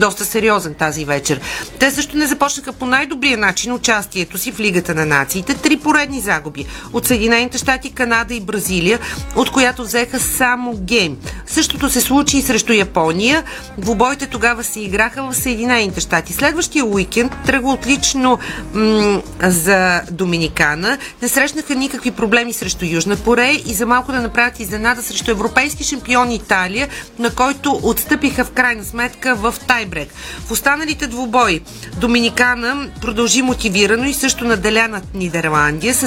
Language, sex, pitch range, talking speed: Bulgarian, female, 205-260 Hz, 145 wpm